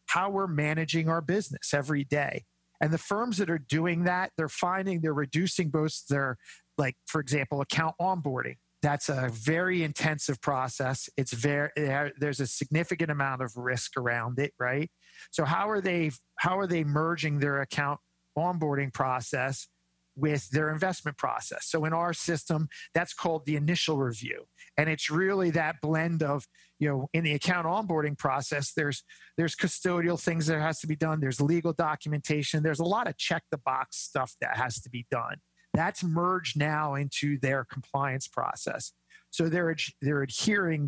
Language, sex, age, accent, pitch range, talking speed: English, male, 50-69, American, 140-165 Hz, 165 wpm